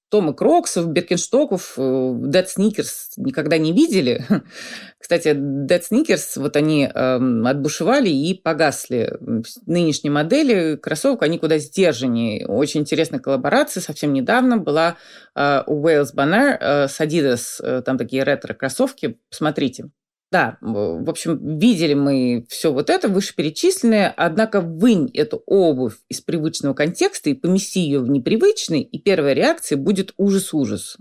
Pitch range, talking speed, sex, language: 145-205 Hz, 125 wpm, female, Russian